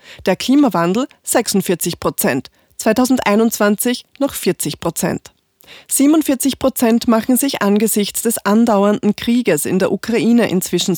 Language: German